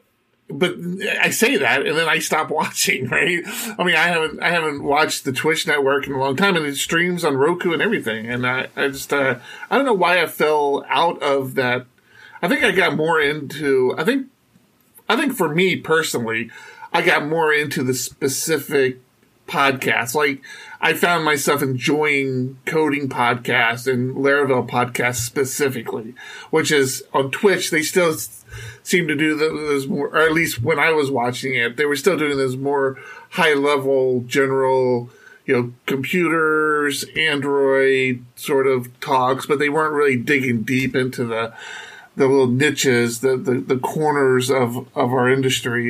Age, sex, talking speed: 40-59, male, 170 wpm